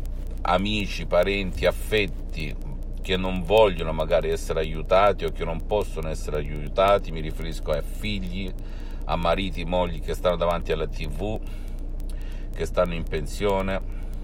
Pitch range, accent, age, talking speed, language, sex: 70-95 Hz, native, 50-69, 130 wpm, Italian, male